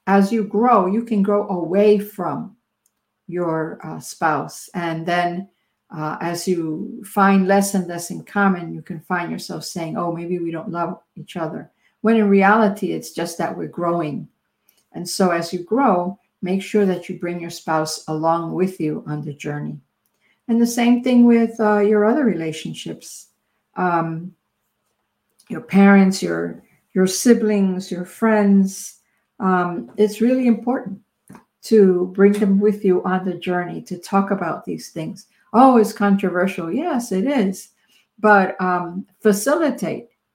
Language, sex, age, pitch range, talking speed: English, female, 60-79, 175-215 Hz, 155 wpm